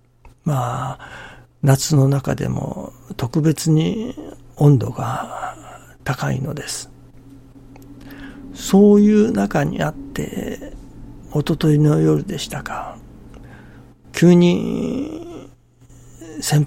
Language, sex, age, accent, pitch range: Japanese, male, 60-79, native, 125-150 Hz